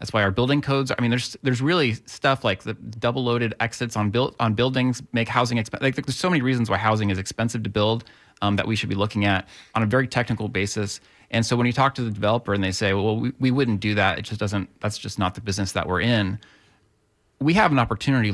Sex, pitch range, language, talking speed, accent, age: male, 110-135 Hz, English, 250 wpm, American, 30-49